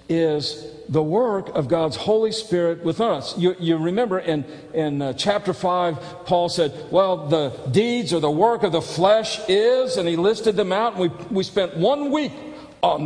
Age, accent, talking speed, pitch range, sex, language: 50-69, American, 190 wpm, 165-250 Hz, male, English